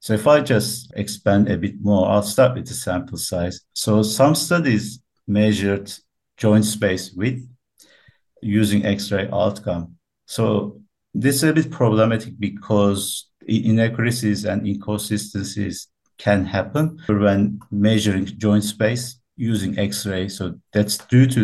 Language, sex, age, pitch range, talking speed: English, male, 50-69, 95-110 Hz, 130 wpm